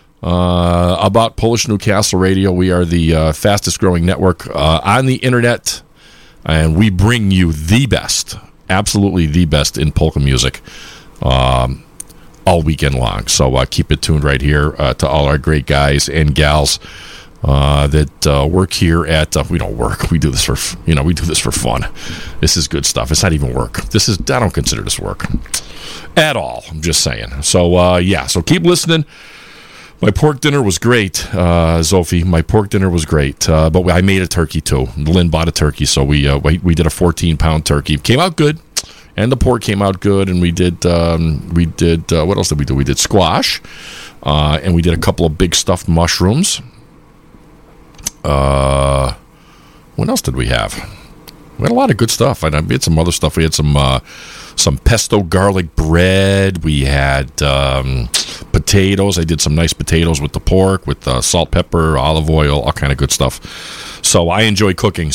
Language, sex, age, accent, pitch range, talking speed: English, male, 40-59, American, 75-95 Hz, 200 wpm